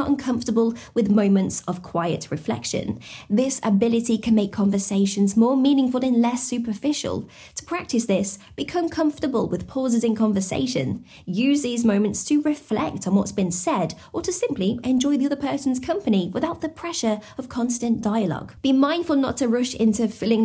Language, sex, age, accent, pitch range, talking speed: English, female, 20-39, British, 205-275 Hz, 160 wpm